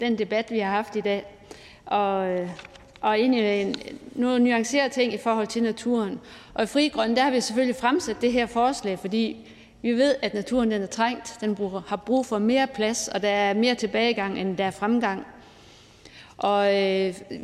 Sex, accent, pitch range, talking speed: female, native, 205-245 Hz, 185 wpm